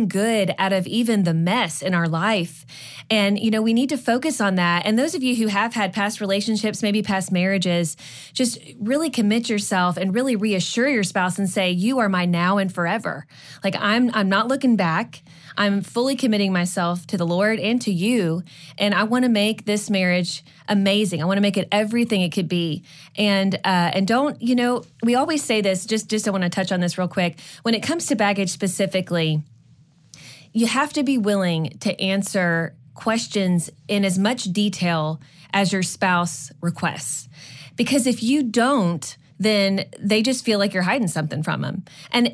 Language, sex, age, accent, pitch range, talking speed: English, female, 20-39, American, 175-225 Hz, 195 wpm